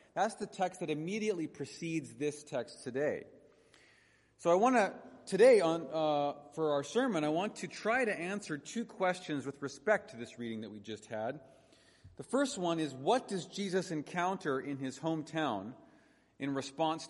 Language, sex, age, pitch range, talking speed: English, male, 40-59, 140-185 Hz, 170 wpm